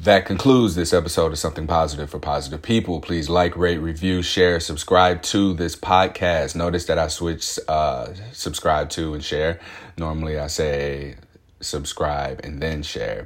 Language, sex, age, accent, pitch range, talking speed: English, male, 30-49, American, 80-110 Hz, 160 wpm